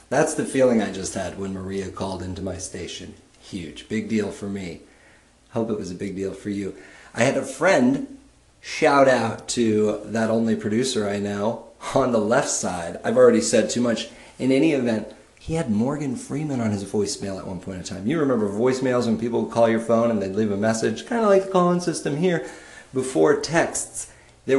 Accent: American